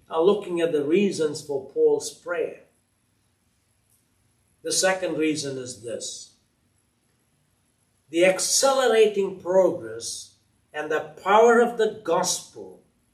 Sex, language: male, English